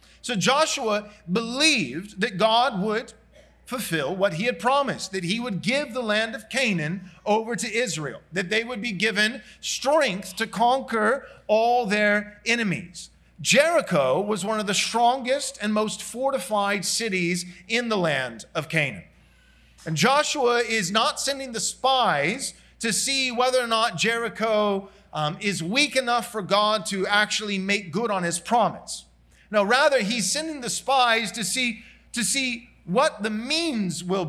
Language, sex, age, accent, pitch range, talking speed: English, male, 40-59, American, 195-255 Hz, 155 wpm